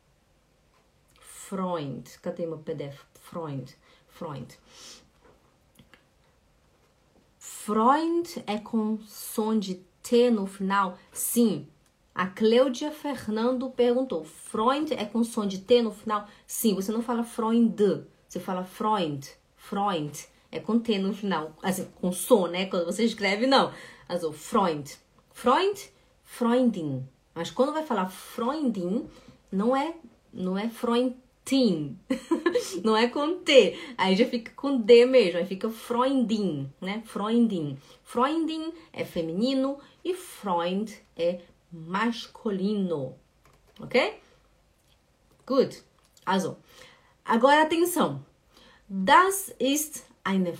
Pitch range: 175-250 Hz